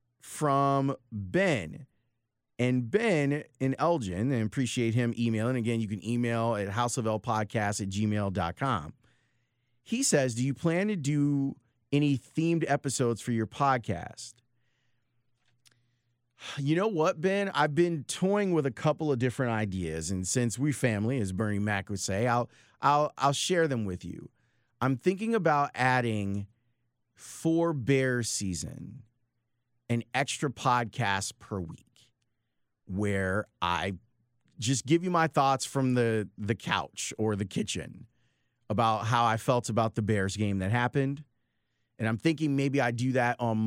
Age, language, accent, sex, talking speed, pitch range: 30-49, English, American, male, 145 wpm, 110-135 Hz